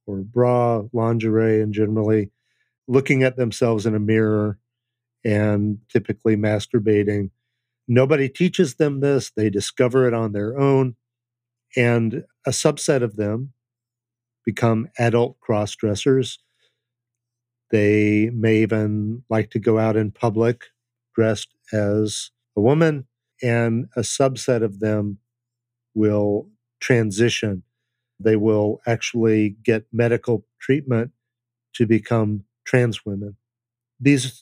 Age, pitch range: 50-69, 110-130 Hz